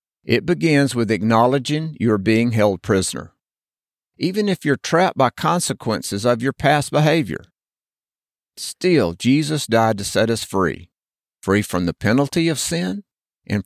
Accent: American